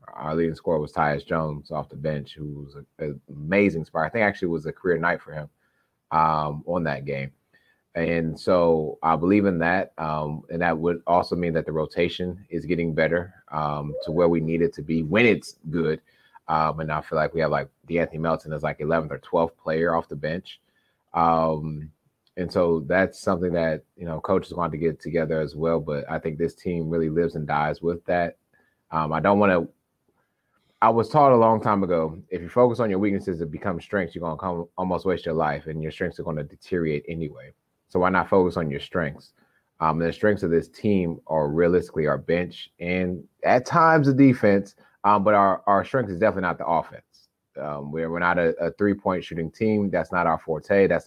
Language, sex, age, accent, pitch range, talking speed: English, male, 30-49, American, 80-90 Hz, 220 wpm